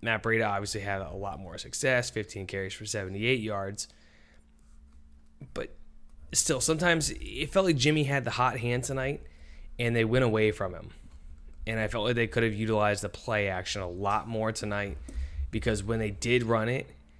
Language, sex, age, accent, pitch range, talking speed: English, male, 20-39, American, 90-115 Hz, 180 wpm